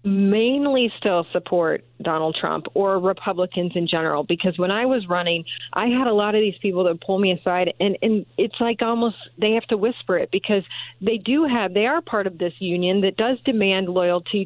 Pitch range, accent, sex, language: 190-230 Hz, American, female, English